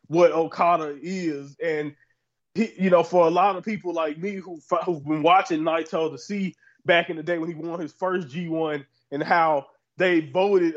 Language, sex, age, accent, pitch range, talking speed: English, male, 20-39, American, 165-200 Hz, 185 wpm